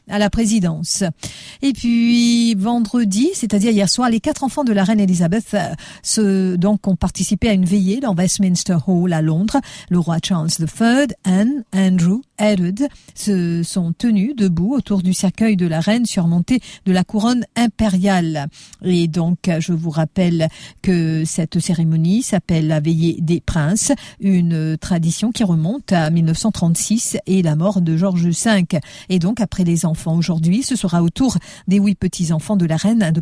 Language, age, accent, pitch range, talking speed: English, 50-69, French, 170-210 Hz, 165 wpm